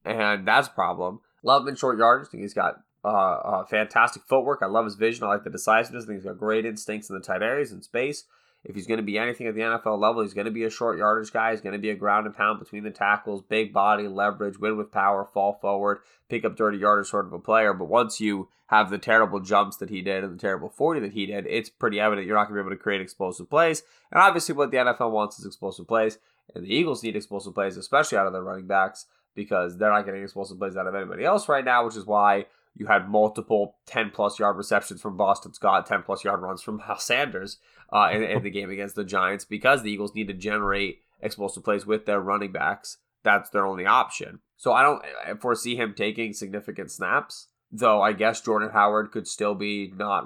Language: English